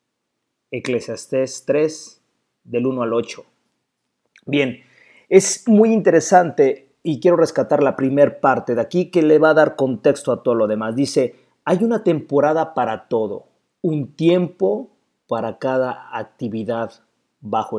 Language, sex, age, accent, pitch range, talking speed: Spanish, male, 40-59, Mexican, 130-170 Hz, 135 wpm